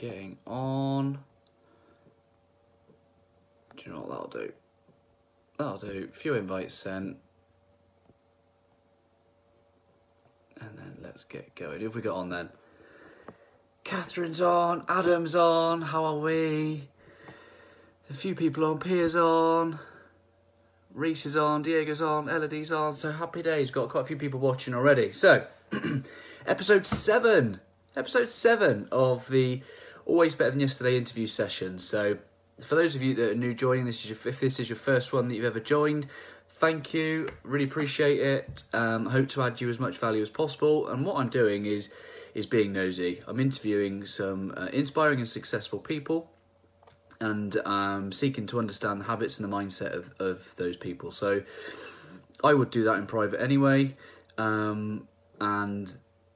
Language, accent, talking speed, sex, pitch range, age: English, British, 155 wpm, male, 105-150 Hz, 30-49